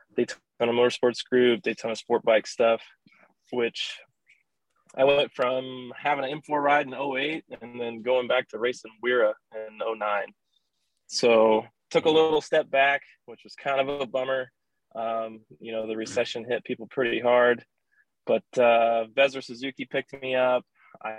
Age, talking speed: 20-39, 165 wpm